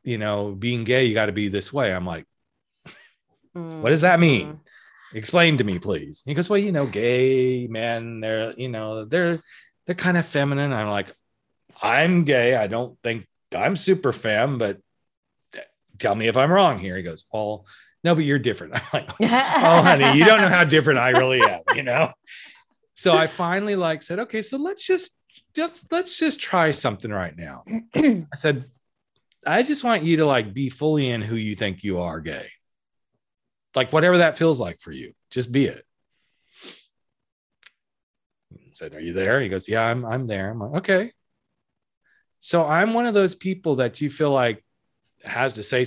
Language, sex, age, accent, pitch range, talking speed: English, male, 40-59, American, 115-175 Hz, 185 wpm